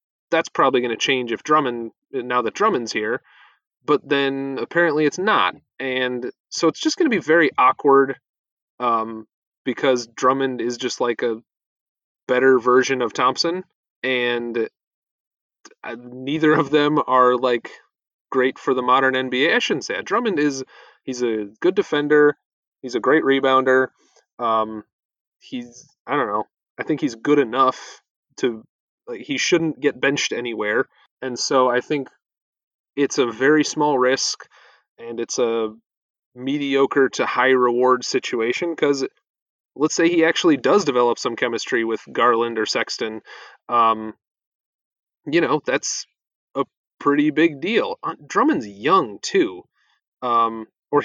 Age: 30-49